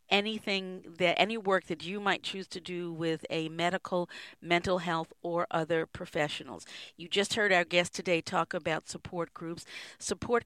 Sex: female